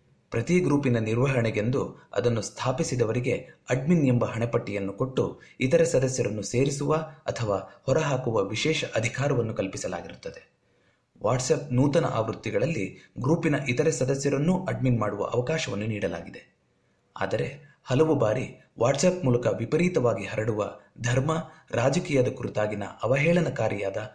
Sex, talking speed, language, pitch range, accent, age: male, 95 wpm, Kannada, 110-150 Hz, native, 30-49